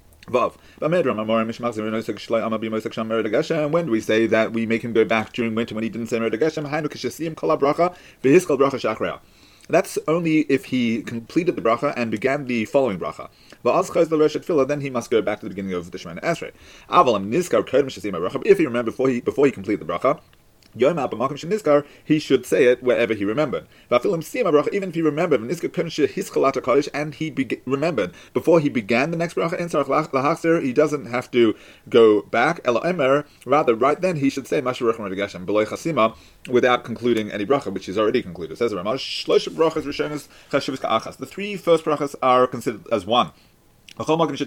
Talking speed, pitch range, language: 135 wpm, 115-155 Hz, English